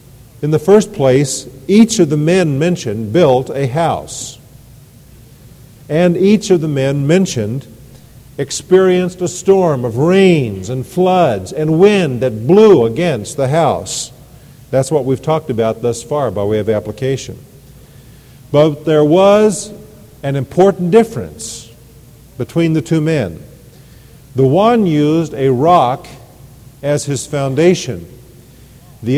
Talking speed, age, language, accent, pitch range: 130 wpm, 50-69, English, American, 125-165 Hz